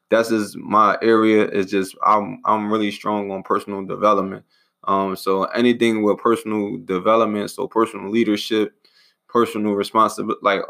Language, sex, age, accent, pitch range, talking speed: English, male, 20-39, American, 95-110 Hz, 140 wpm